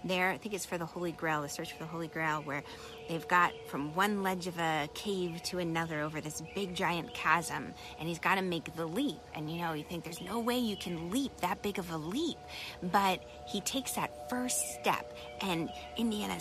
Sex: female